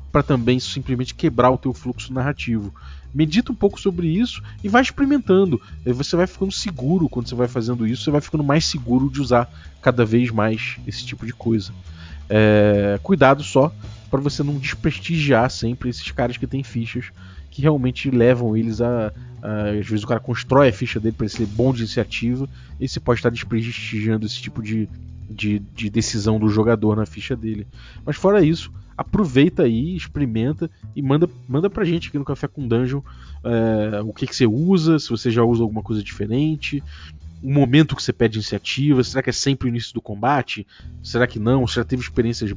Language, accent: Portuguese, Brazilian